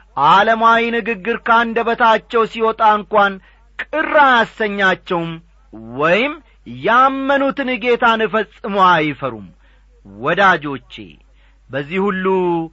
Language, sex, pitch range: Amharic, male, 165-235 Hz